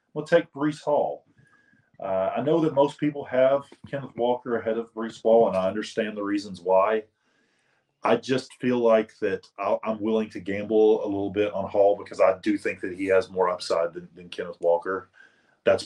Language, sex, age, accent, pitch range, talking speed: English, male, 30-49, American, 100-130 Hz, 195 wpm